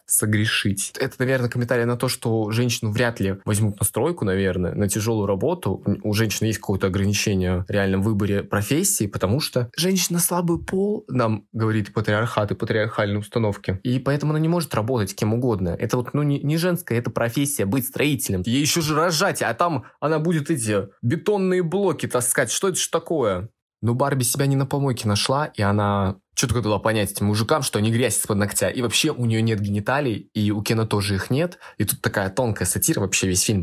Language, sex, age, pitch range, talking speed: Russian, male, 20-39, 100-130 Hz, 195 wpm